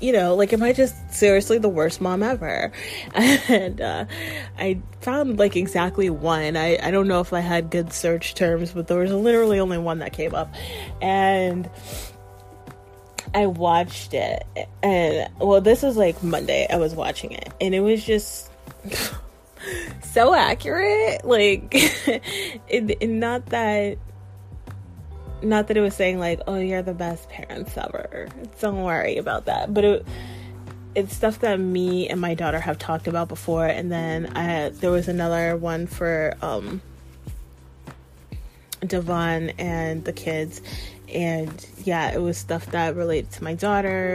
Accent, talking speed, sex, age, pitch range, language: American, 150 wpm, female, 20-39, 155-195 Hz, English